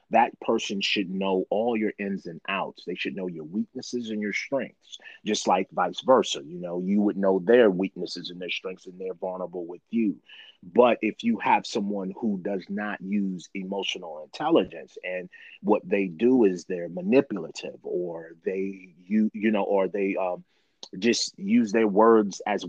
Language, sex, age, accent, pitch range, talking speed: English, male, 30-49, American, 95-110 Hz, 175 wpm